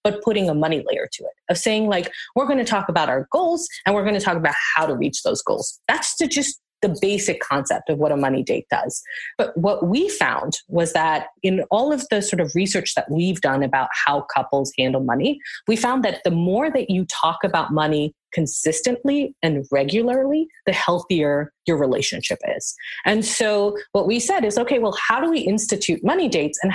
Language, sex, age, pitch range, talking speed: English, female, 30-49, 160-240 Hz, 210 wpm